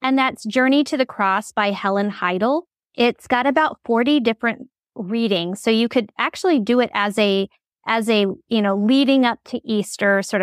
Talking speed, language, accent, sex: 185 wpm, English, American, female